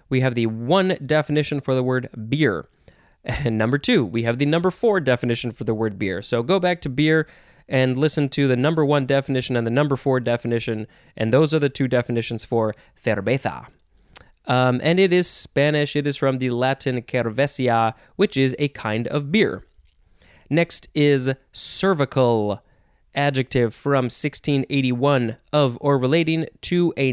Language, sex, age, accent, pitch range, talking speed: English, male, 20-39, American, 125-155 Hz, 165 wpm